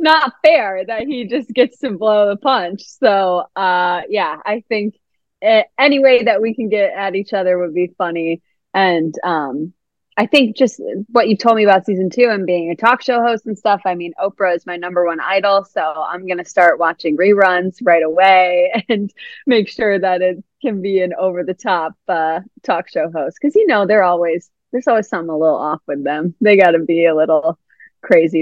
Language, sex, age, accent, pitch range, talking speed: English, female, 30-49, American, 175-235 Hz, 210 wpm